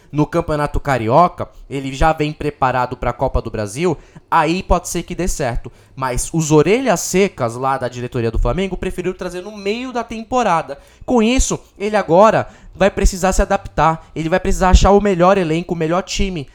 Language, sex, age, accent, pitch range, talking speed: Portuguese, male, 20-39, Brazilian, 135-190 Hz, 185 wpm